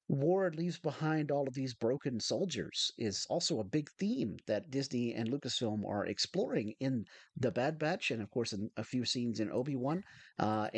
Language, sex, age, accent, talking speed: English, male, 40-59, American, 185 wpm